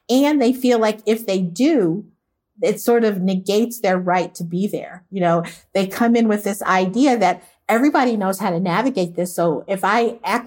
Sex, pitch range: female, 180-230 Hz